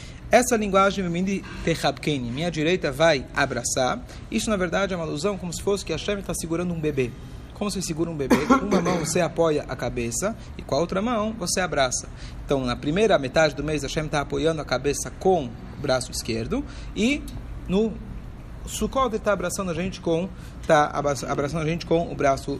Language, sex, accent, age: Portuguese, male, Brazilian, 40-59